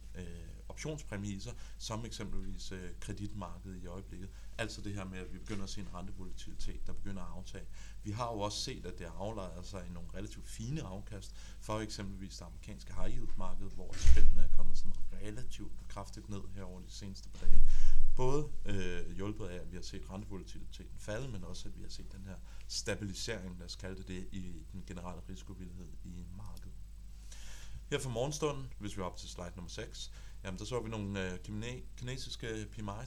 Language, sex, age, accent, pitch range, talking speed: Danish, male, 30-49, native, 90-105 Hz, 190 wpm